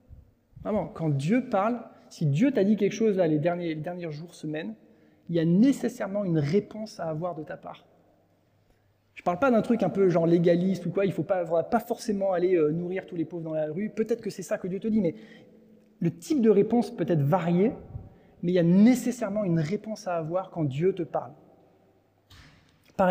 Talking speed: 215 wpm